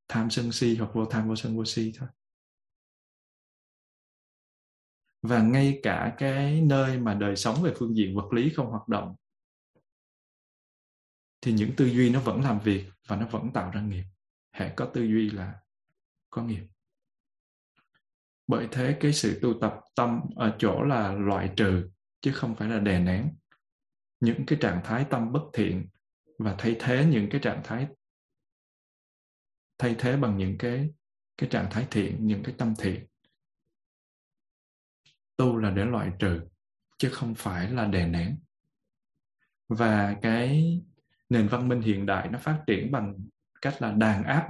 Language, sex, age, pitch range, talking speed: Vietnamese, male, 20-39, 100-130 Hz, 160 wpm